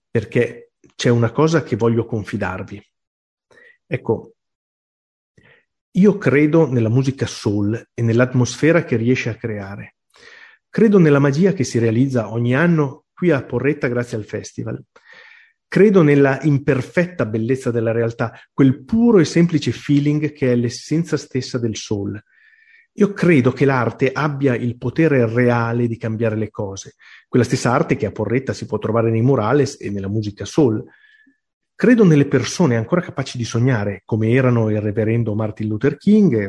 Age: 40-59